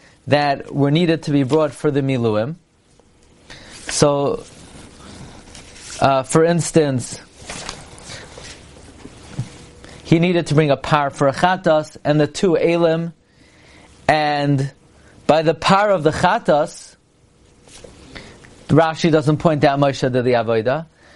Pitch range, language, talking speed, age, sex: 140-175 Hz, English, 120 wpm, 30-49, male